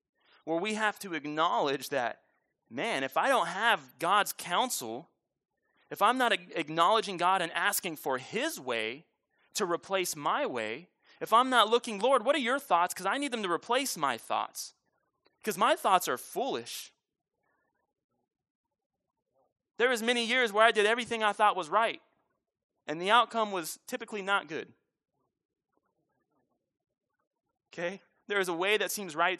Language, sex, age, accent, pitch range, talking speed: English, male, 30-49, American, 160-215 Hz, 155 wpm